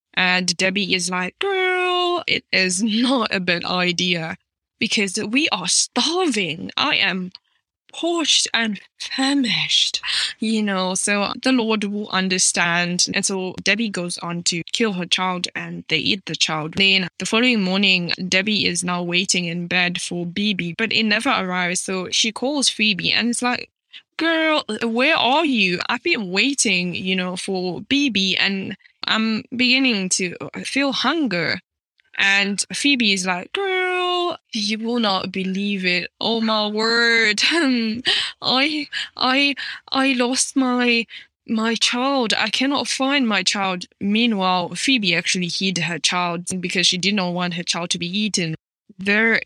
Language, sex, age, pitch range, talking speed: English, female, 10-29, 185-240 Hz, 150 wpm